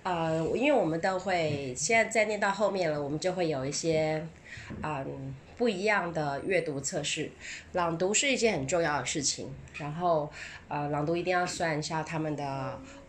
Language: English